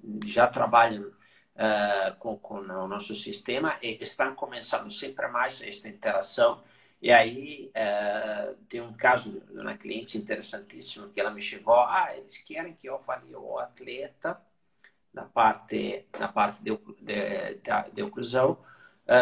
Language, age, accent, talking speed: English, 50-69, Italian, 130 wpm